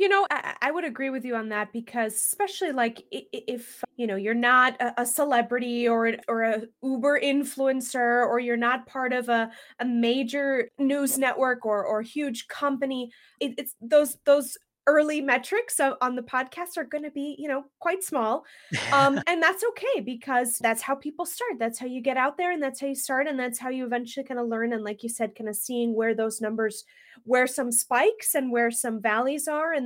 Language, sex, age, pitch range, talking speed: English, female, 20-39, 225-275 Hz, 205 wpm